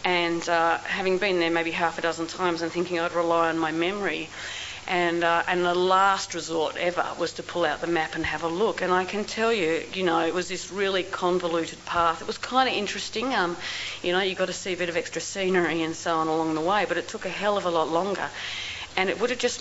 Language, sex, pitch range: English, female, 165-185 Hz